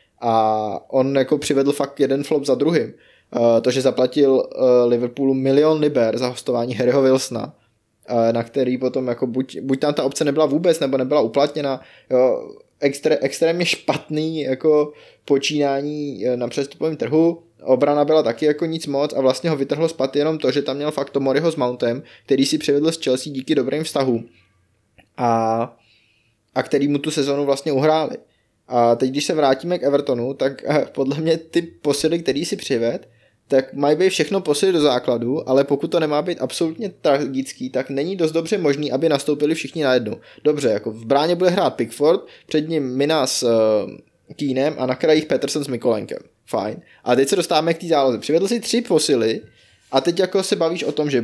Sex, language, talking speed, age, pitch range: male, Czech, 185 wpm, 20-39, 130-160 Hz